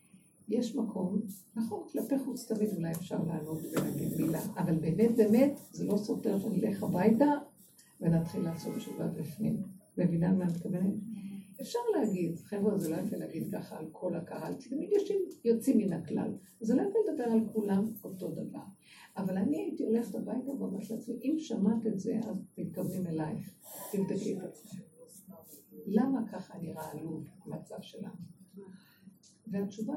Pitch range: 185-225 Hz